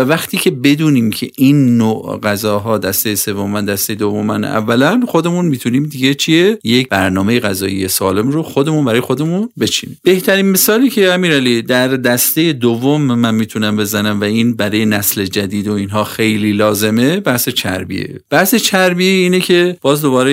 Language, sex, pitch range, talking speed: Persian, male, 110-155 Hz, 155 wpm